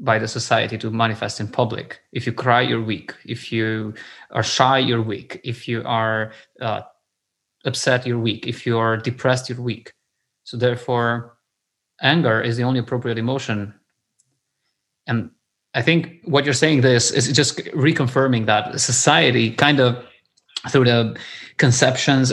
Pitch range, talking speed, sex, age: 115-135 Hz, 150 wpm, male, 20-39